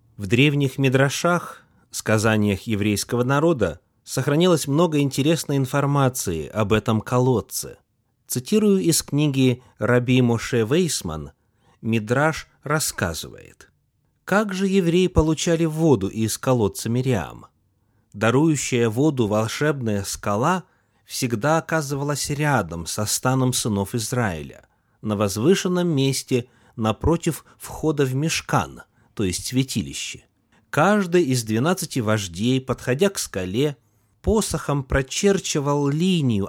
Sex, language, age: male, Russian, 30-49